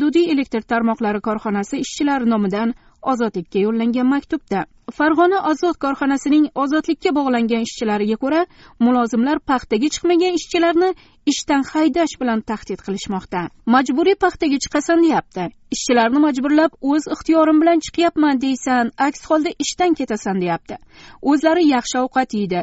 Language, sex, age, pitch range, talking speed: English, female, 30-49, 225-315 Hz, 100 wpm